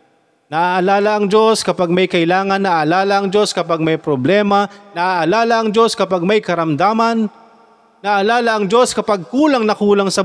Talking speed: 150 wpm